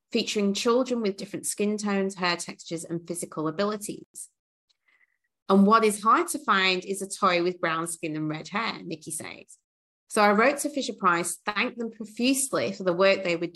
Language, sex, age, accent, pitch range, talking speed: English, female, 30-49, British, 180-215 Hz, 180 wpm